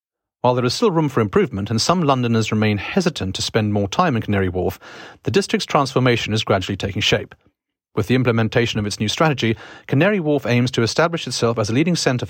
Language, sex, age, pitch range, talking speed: English, male, 40-59, 105-140 Hz, 210 wpm